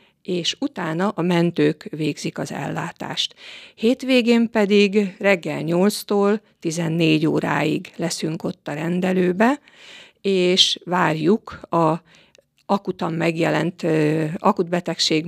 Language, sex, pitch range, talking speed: Hungarian, female, 165-195 Hz, 95 wpm